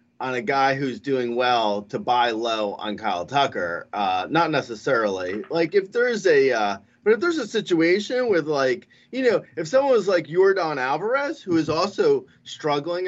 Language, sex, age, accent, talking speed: English, male, 30-49, American, 180 wpm